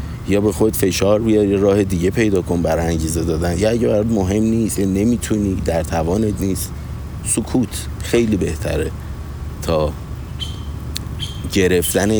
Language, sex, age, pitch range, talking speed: Persian, male, 50-69, 80-100 Hz, 130 wpm